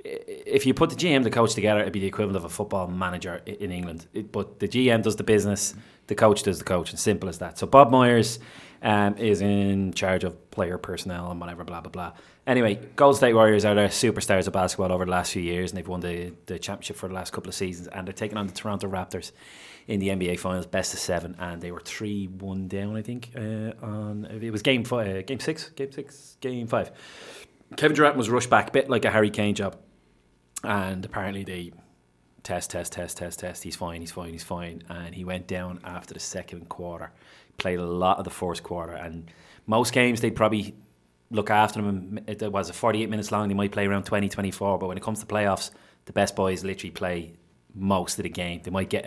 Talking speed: 225 wpm